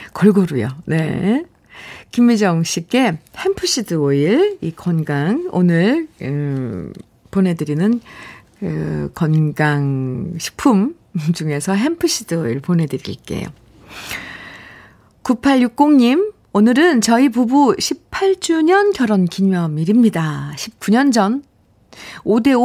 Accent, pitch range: native, 175-245 Hz